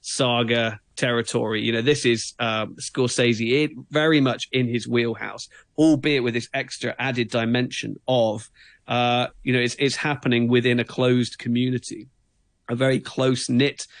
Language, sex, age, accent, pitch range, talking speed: English, male, 40-59, British, 115-135 Hz, 140 wpm